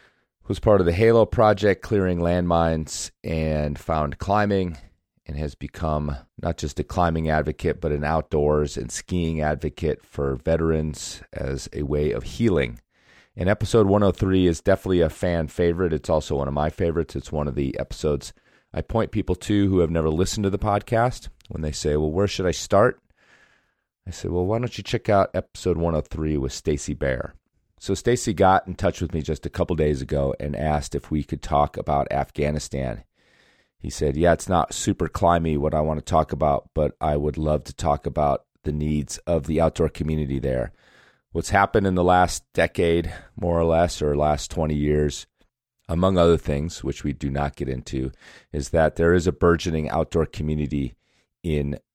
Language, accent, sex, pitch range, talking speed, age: English, American, male, 75-90 Hz, 185 wpm, 30-49